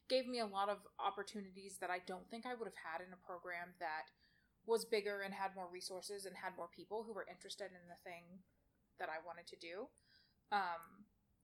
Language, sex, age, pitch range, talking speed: English, female, 20-39, 185-230 Hz, 210 wpm